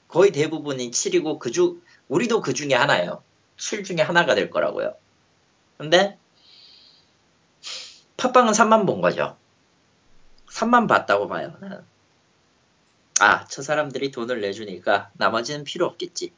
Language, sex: Korean, male